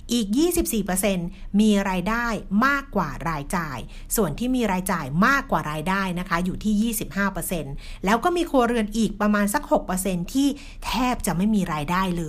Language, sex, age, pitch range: Thai, female, 60-79, 185-235 Hz